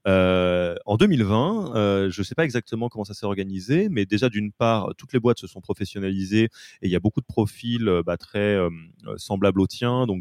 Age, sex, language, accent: 30-49, male, French, French